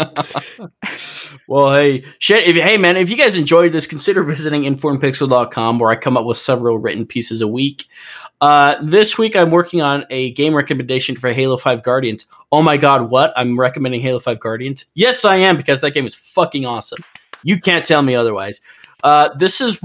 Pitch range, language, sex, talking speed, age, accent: 125-160 Hz, English, male, 185 wpm, 20-39, American